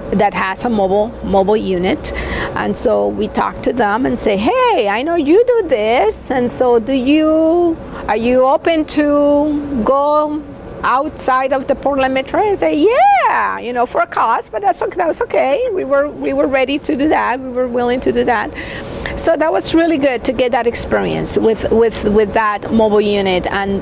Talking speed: 190 wpm